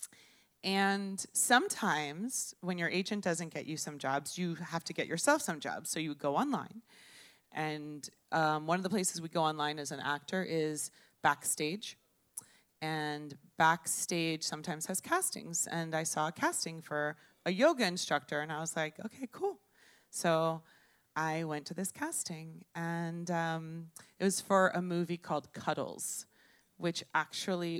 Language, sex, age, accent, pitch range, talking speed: English, female, 30-49, American, 155-195 Hz, 155 wpm